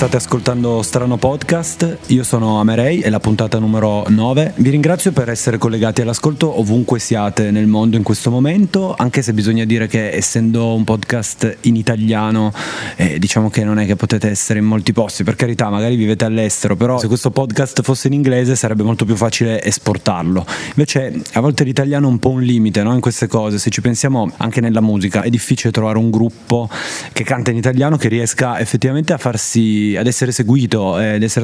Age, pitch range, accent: 30-49, 105-125 Hz, native